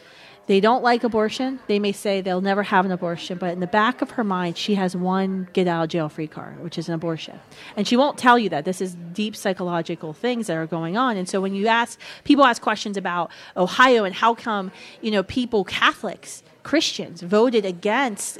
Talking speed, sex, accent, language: 220 wpm, female, American, English